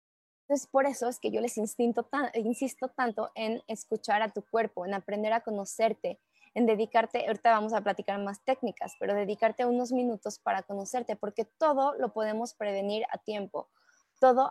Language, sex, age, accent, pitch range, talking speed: Spanish, female, 20-39, Mexican, 200-250 Hz, 175 wpm